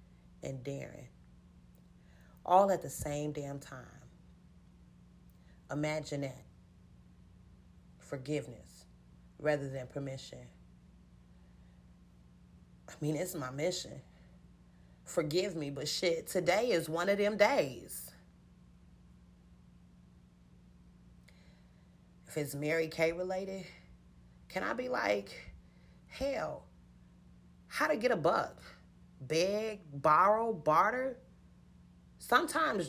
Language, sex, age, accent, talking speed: English, female, 30-49, American, 90 wpm